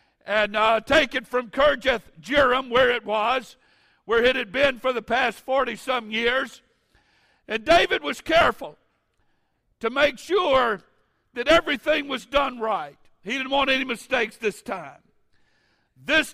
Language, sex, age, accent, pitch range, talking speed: English, male, 60-79, American, 240-290 Hz, 145 wpm